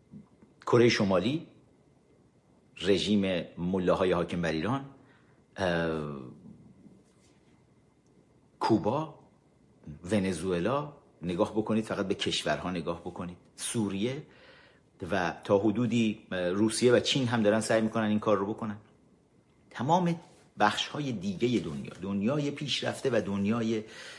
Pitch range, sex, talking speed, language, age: 100-120 Hz, male, 100 wpm, Persian, 50-69